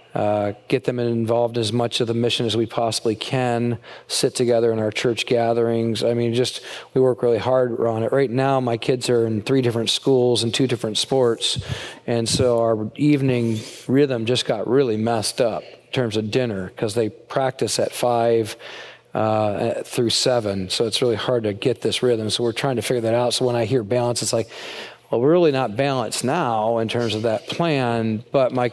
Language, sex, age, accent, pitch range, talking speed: English, male, 40-59, American, 115-130 Hz, 205 wpm